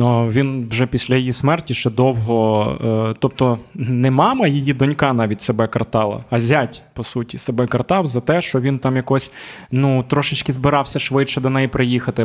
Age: 20-39